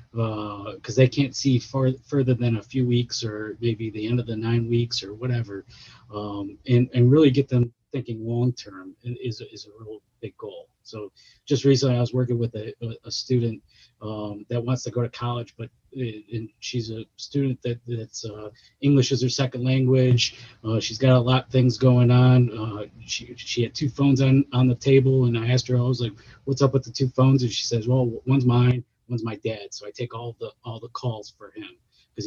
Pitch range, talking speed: 115-130 Hz, 220 wpm